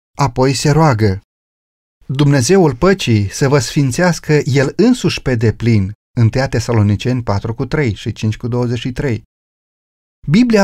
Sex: male